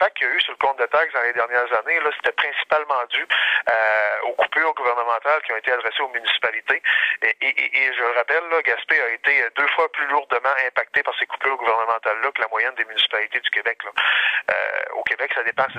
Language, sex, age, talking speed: French, male, 30-49, 230 wpm